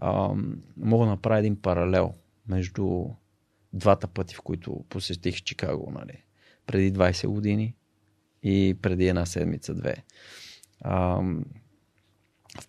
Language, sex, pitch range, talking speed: Bulgarian, male, 95-110 Hz, 110 wpm